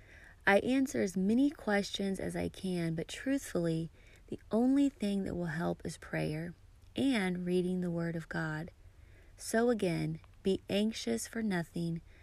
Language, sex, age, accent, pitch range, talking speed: English, female, 30-49, American, 125-200 Hz, 145 wpm